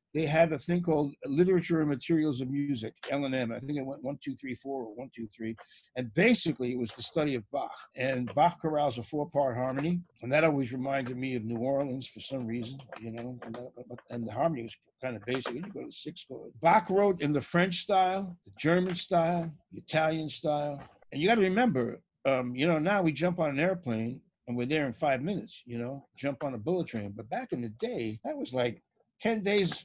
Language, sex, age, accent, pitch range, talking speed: English, male, 50-69, American, 130-175 Hz, 235 wpm